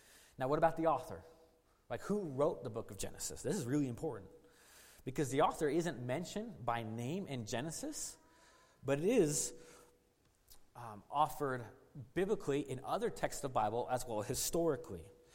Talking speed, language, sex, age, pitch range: 160 wpm, English, male, 30-49, 120-160 Hz